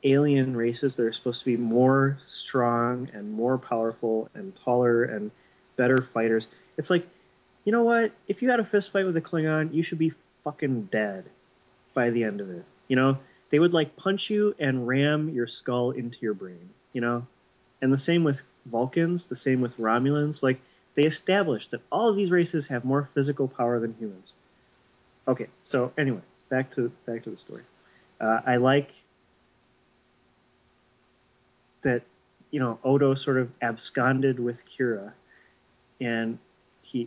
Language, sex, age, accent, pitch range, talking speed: English, male, 30-49, American, 115-140 Hz, 165 wpm